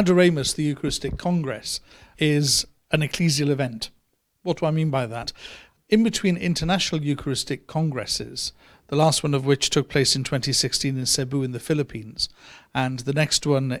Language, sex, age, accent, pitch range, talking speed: English, male, 50-69, British, 130-155 Hz, 155 wpm